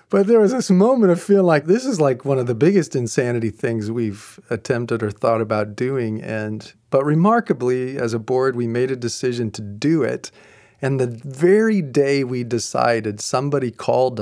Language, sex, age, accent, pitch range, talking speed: English, male, 40-59, American, 110-135 Hz, 185 wpm